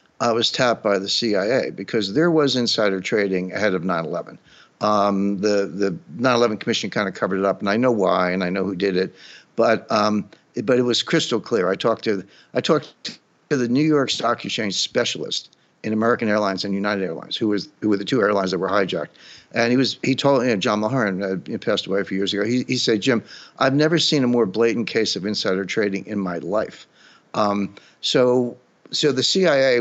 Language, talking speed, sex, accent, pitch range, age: English, 220 wpm, male, American, 100-120 Hz, 60-79